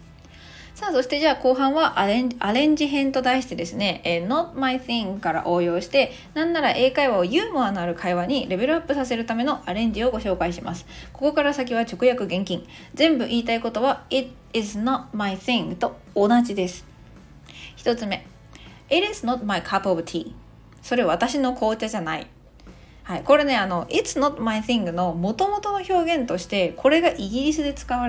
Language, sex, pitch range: Japanese, female, 180-265 Hz